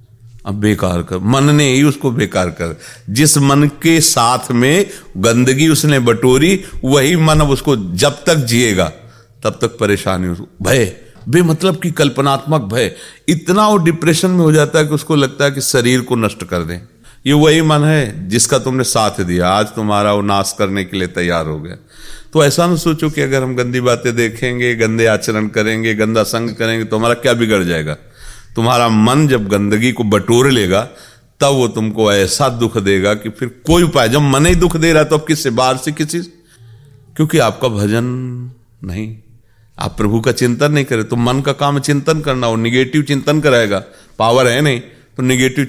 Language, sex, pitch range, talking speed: Hindi, male, 105-145 Hz, 190 wpm